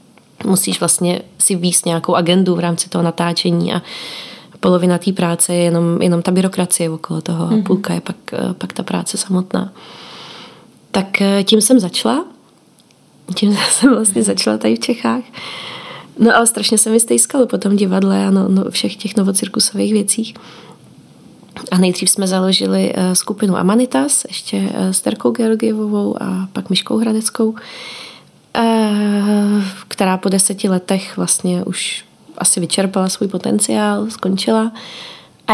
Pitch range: 180-210 Hz